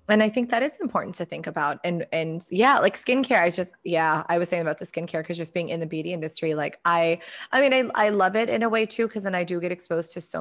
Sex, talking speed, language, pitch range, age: female, 290 wpm, English, 165-210 Hz, 20-39